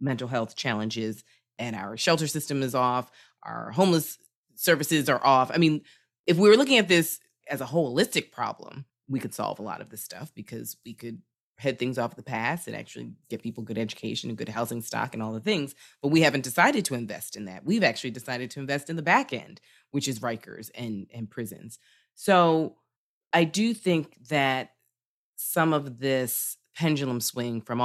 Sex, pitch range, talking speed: female, 120-190 Hz, 195 wpm